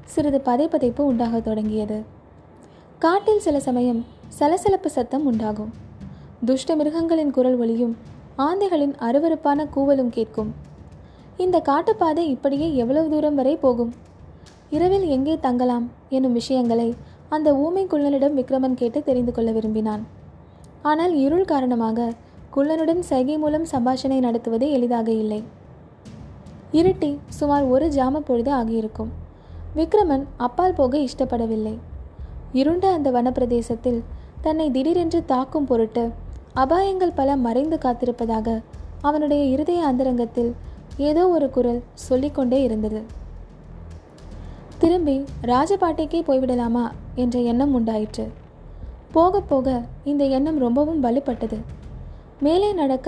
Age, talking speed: 20-39, 100 wpm